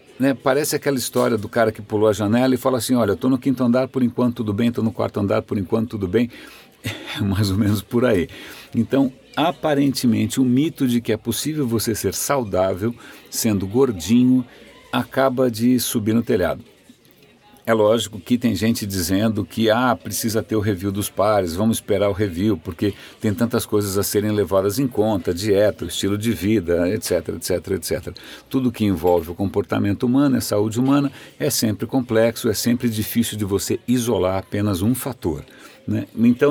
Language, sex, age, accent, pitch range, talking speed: Portuguese, male, 60-79, Brazilian, 100-125 Hz, 180 wpm